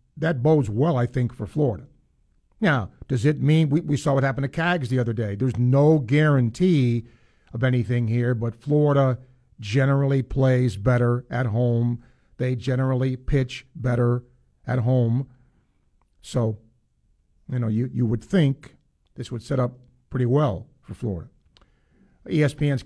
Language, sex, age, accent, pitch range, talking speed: English, male, 50-69, American, 110-145 Hz, 145 wpm